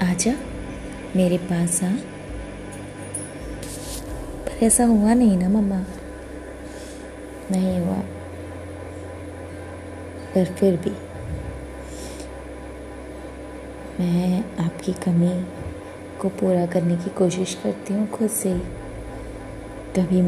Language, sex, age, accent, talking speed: Hindi, female, 20-39, native, 85 wpm